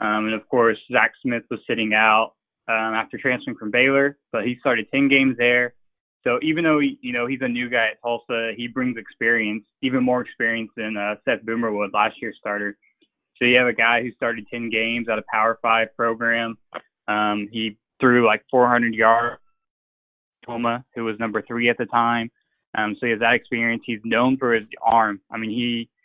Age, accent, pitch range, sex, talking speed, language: 20-39, American, 110-125 Hz, male, 200 wpm, English